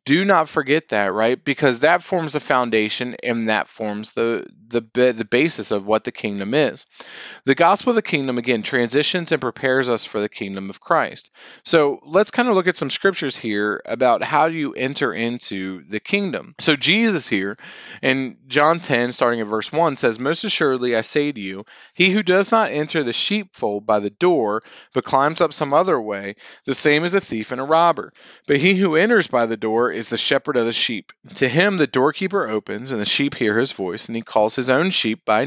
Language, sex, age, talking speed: English, male, 30-49, 215 wpm